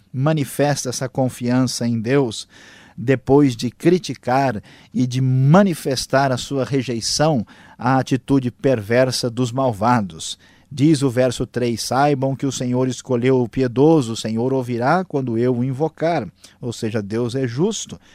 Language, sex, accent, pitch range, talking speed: Portuguese, male, Brazilian, 125-155 Hz, 140 wpm